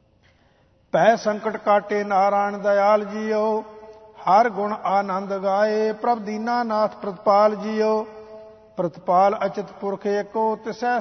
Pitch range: 205-220 Hz